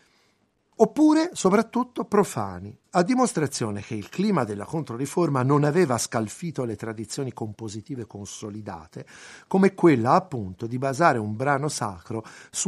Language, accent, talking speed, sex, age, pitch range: Italian, native, 125 wpm, male, 50-69, 115-170 Hz